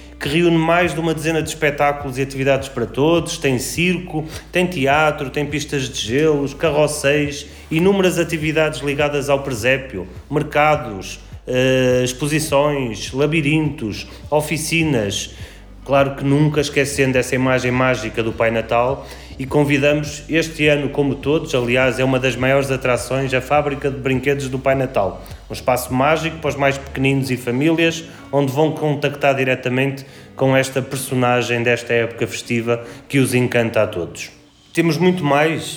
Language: Portuguese